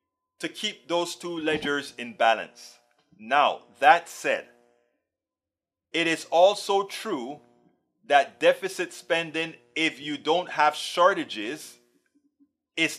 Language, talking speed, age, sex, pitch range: English, 105 wpm, 30-49, male, 120-165 Hz